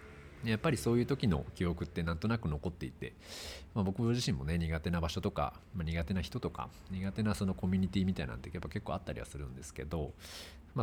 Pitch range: 75-105 Hz